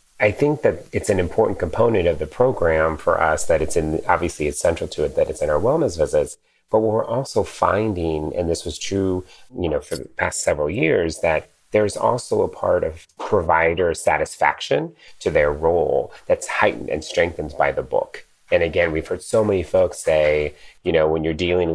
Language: English